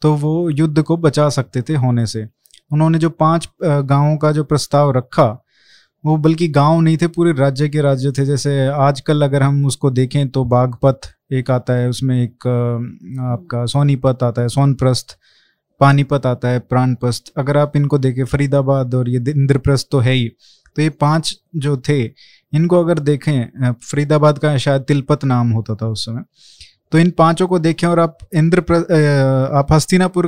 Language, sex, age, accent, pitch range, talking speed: Hindi, male, 20-39, native, 135-165 Hz, 175 wpm